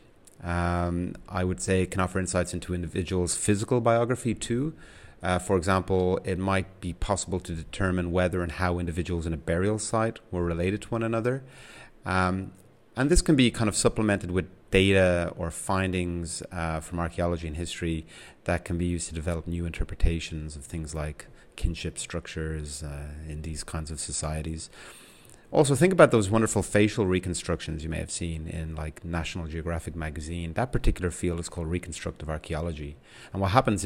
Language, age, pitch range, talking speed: English, 30-49, 85-105 Hz, 170 wpm